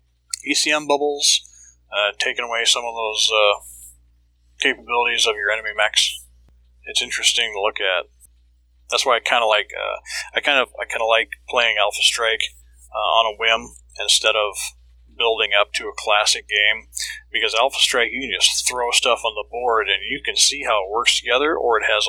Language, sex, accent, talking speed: English, male, American, 190 wpm